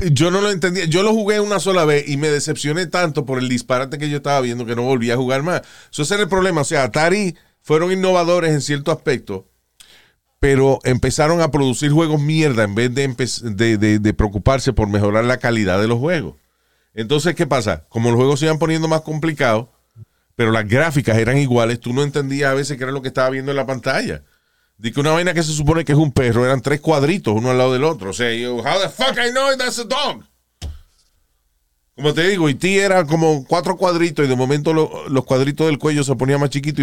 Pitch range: 100-155 Hz